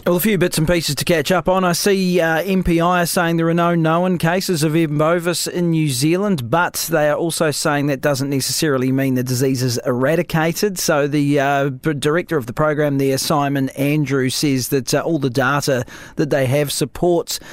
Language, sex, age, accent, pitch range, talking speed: English, male, 30-49, Australian, 140-170 Hz, 200 wpm